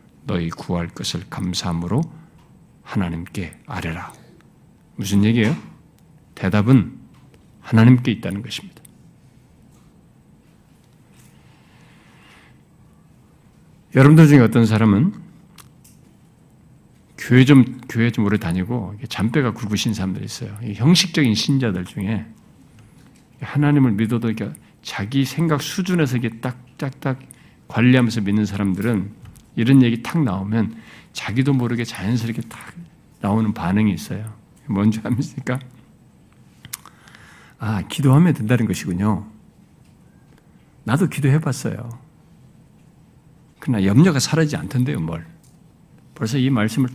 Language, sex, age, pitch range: Korean, male, 50-69, 105-140 Hz